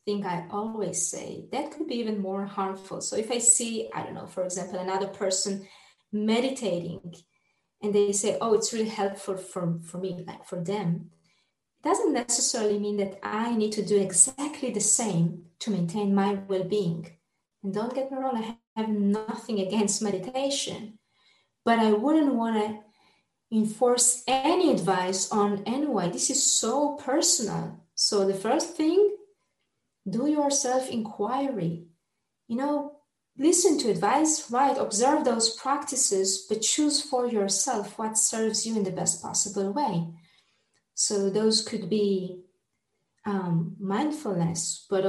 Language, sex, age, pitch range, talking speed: English, female, 20-39, 190-255 Hz, 145 wpm